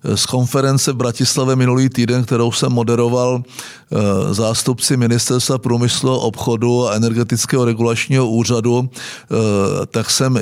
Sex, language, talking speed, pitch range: male, Czech, 110 wpm, 115-135 Hz